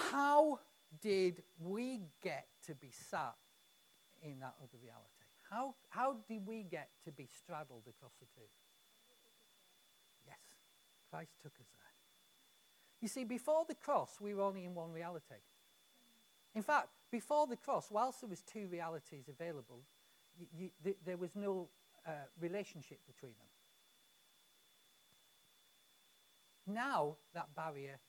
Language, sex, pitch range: English, male, 140-210 Hz